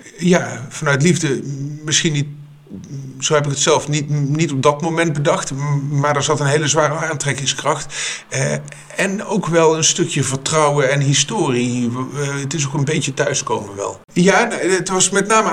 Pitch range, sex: 130-160 Hz, male